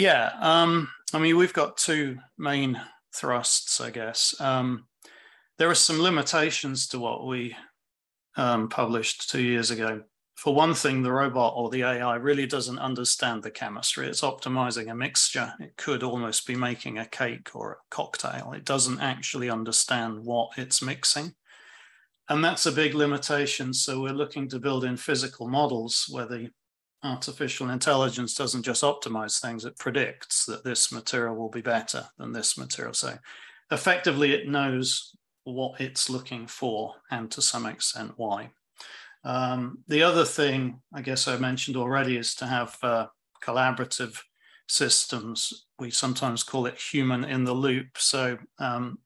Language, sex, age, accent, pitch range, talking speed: English, male, 40-59, British, 120-140 Hz, 155 wpm